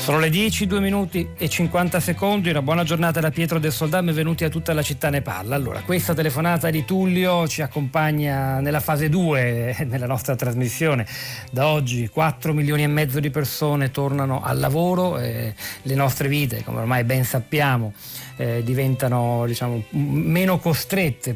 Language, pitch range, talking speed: Italian, 125-155 Hz, 170 wpm